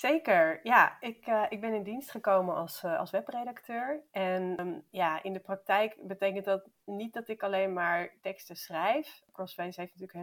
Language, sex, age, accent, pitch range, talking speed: Dutch, female, 30-49, Dutch, 175-205 Hz, 190 wpm